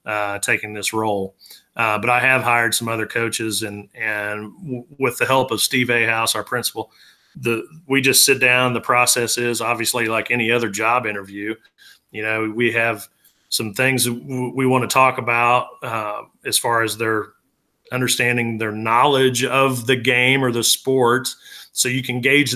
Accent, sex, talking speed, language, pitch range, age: American, male, 185 wpm, English, 115-130 Hz, 40-59